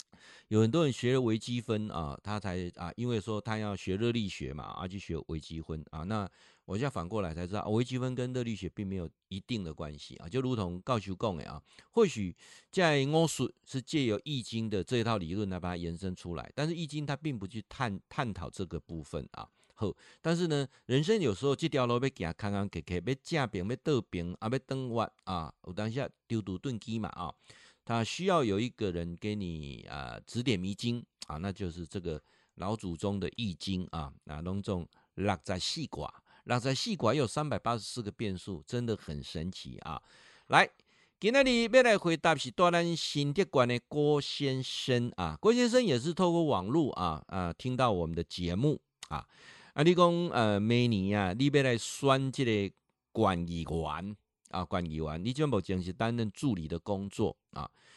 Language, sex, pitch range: Chinese, male, 90-130 Hz